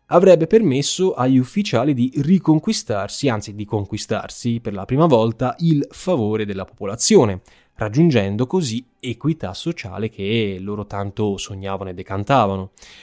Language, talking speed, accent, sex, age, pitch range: Italian, 125 wpm, native, male, 20-39, 105-145 Hz